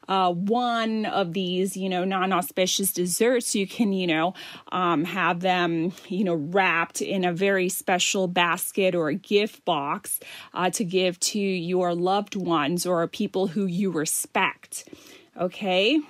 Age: 30-49